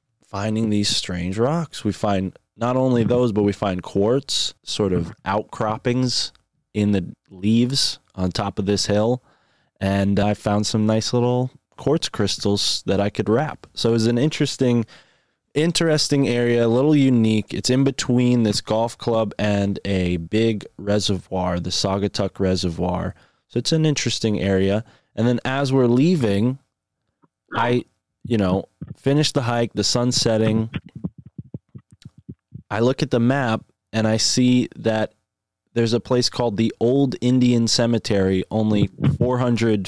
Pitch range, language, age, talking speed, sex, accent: 100-125 Hz, English, 20-39, 145 wpm, male, American